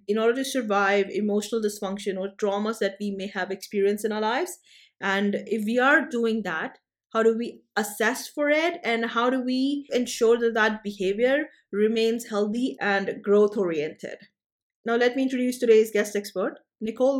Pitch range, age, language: 205-245 Hz, 30-49, English